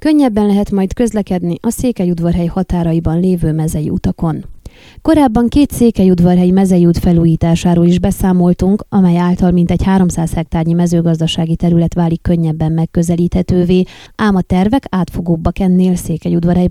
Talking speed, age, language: 120 wpm, 20-39, Hungarian